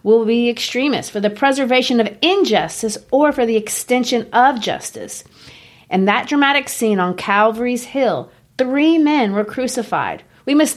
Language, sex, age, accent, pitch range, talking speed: English, female, 40-59, American, 185-250 Hz, 150 wpm